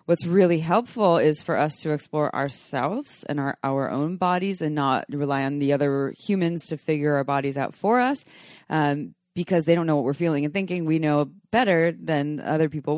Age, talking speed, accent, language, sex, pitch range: 20-39, 205 wpm, American, English, female, 150-205 Hz